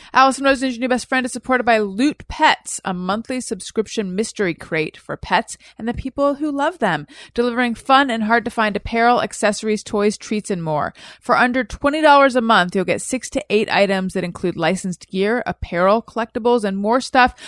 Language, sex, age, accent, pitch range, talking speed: English, female, 30-49, American, 195-260 Hz, 180 wpm